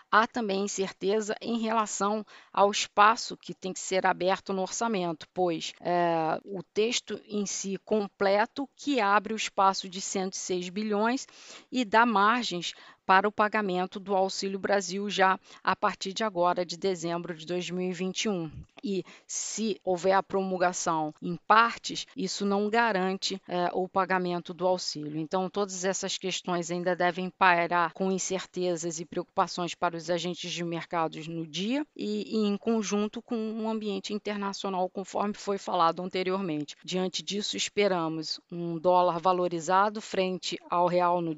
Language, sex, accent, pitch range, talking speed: Portuguese, female, Brazilian, 180-205 Hz, 145 wpm